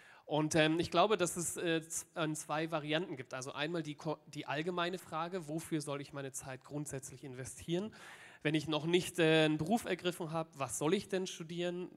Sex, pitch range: male, 135-160 Hz